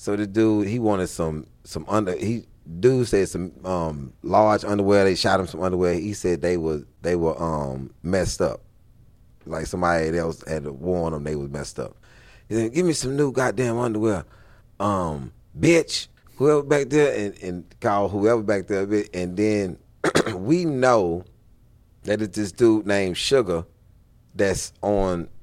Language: English